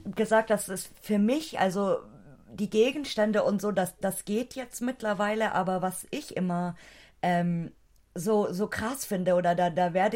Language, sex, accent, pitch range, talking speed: German, female, German, 185-225 Hz, 165 wpm